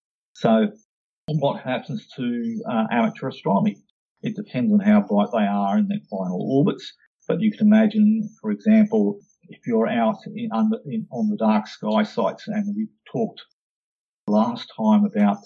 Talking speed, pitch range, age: 145 wpm, 135-220 Hz, 50-69